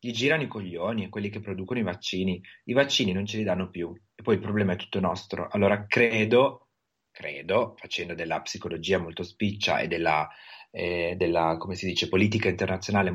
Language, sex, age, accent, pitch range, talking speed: Italian, male, 30-49, native, 95-115 Hz, 185 wpm